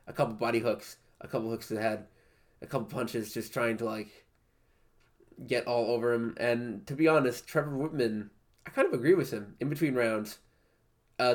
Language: English